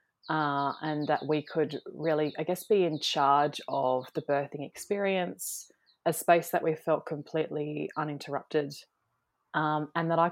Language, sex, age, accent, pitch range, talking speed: English, female, 20-39, Australian, 145-170 Hz, 150 wpm